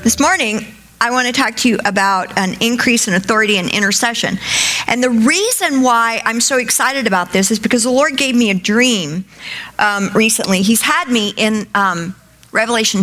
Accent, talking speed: American, 185 wpm